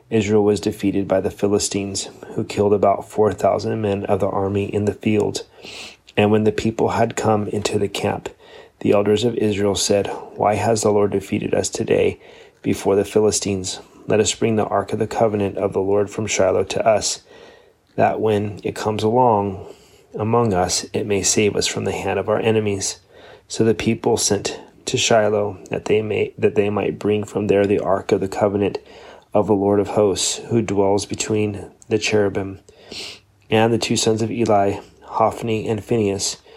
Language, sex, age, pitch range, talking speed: English, male, 30-49, 100-110 Hz, 185 wpm